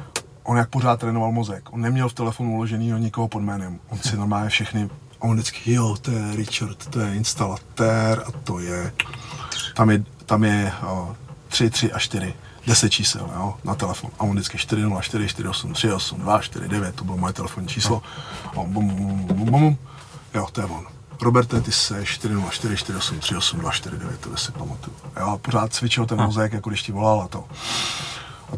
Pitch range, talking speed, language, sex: 105-125 Hz, 175 wpm, Czech, male